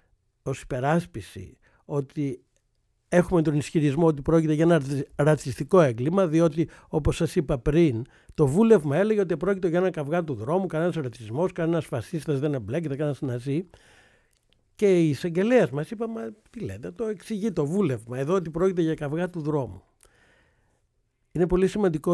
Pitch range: 130-175 Hz